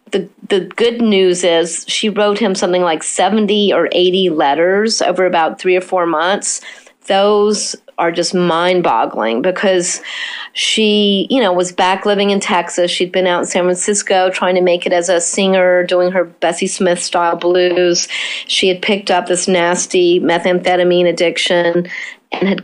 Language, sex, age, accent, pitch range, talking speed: English, female, 40-59, American, 180-220 Hz, 165 wpm